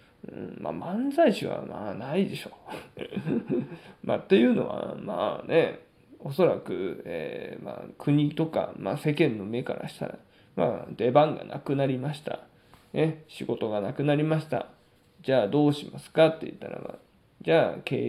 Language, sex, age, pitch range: Japanese, male, 20-39, 125-155 Hz